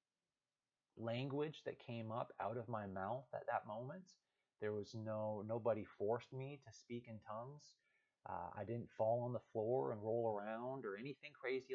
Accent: American